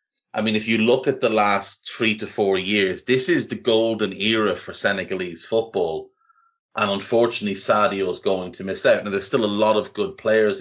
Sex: male